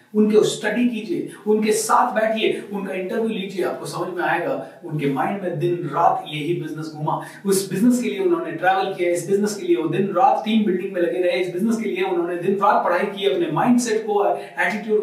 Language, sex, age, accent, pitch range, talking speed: Hindi, male, 30-49, native, 150-205 Hz, 130 wpm